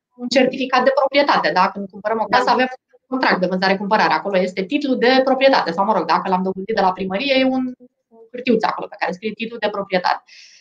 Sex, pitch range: female, 195-260 Hz